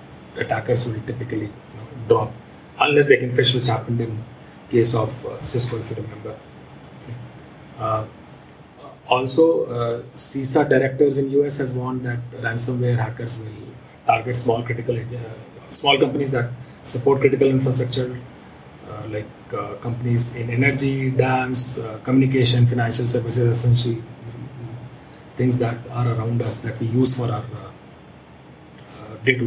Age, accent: 30-49, Indian